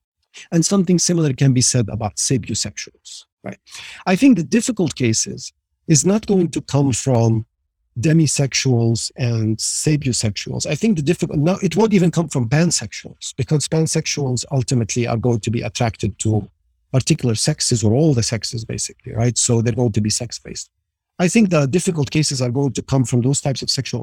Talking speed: 180 wpm